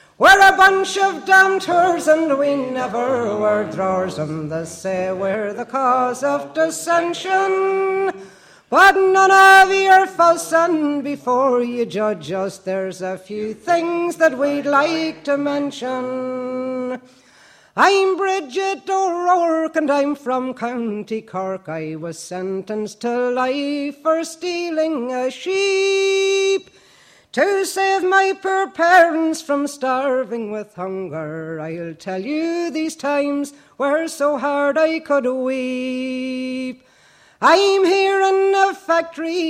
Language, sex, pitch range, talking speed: English, female, 230-345 Hz, 120 wpm